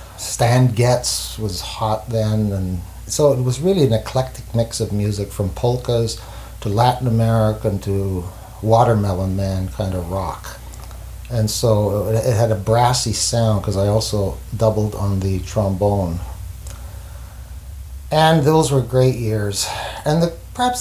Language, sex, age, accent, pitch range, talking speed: English, male, 60-79, American, 95-115 Hz, 135 wpm